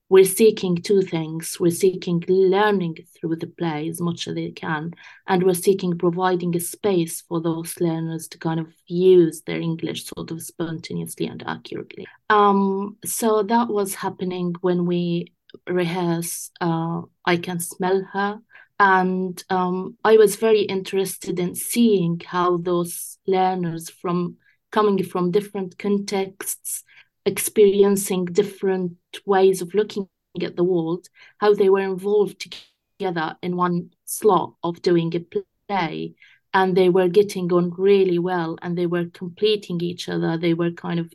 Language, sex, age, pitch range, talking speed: English, female, 30-49, 170-190 Hz, 145 wpm